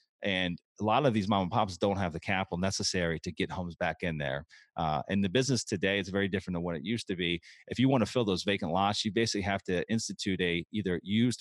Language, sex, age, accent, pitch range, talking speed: English, male, 30-49, American, 85-105 Hz, 260 wpm